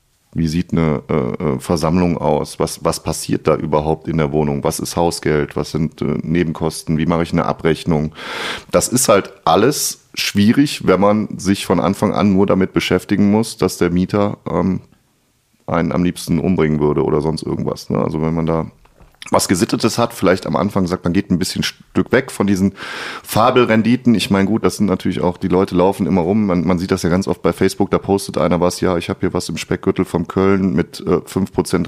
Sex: male